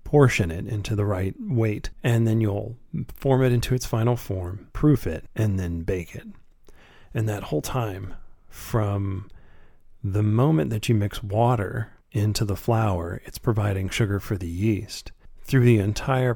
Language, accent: English, American